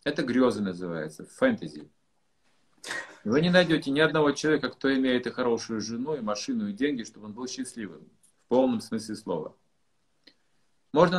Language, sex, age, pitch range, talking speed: Russian, male, 50-69, 115-180 Hz, 150 wpm